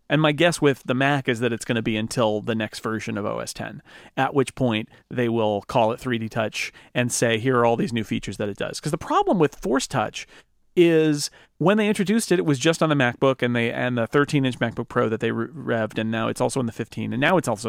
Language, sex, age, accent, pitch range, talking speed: English, male, 40-59, American, 125-160 Hz, 260 wpm